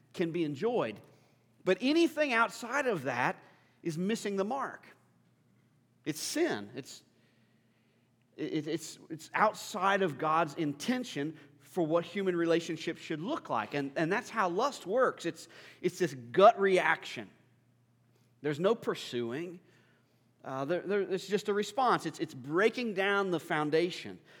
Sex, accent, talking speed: male, American, 140 wpm